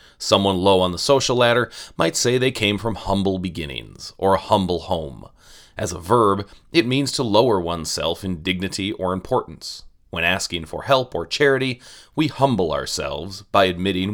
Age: 30-49